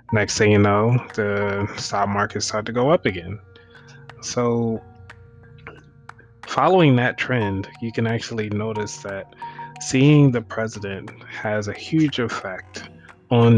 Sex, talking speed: male, 130 wpm